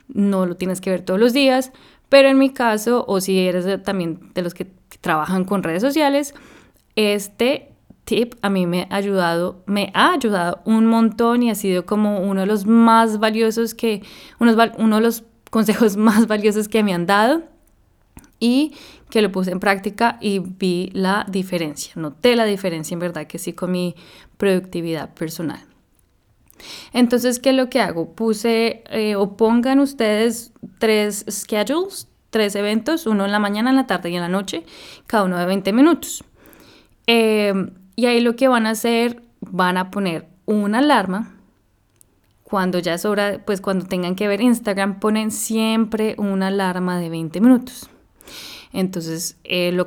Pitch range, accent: 185-230 Hz, Colombian